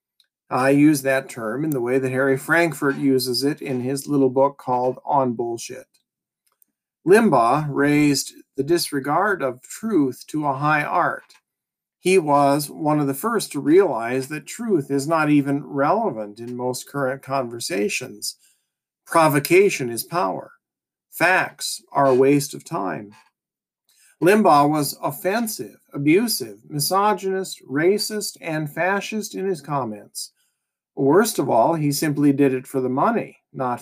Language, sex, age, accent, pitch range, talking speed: English, male, 50-69, American, 135-170 Hz, 140 wpm